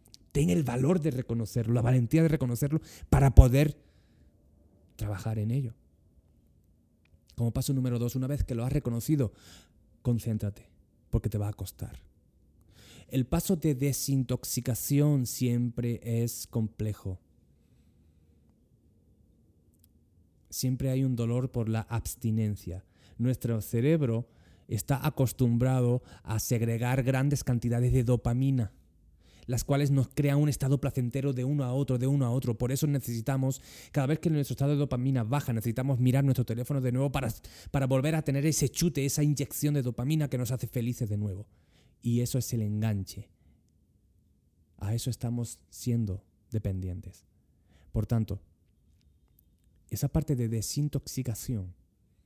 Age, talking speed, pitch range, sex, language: 30-49, 135 wpm, 95-130 Hz, male, Spanish